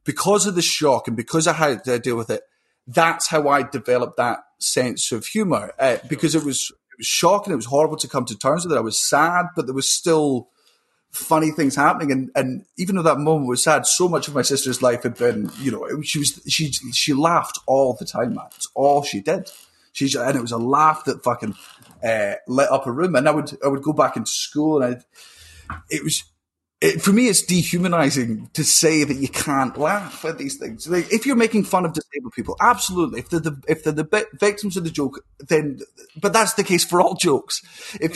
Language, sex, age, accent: English, male, 30-49, British